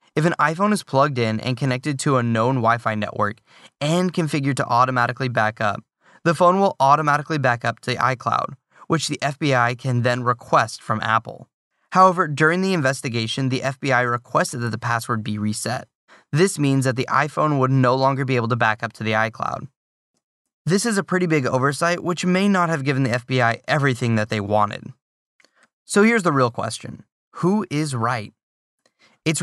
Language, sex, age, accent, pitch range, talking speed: English, male, 10-29, American, 120-155 Hz, 180 wpm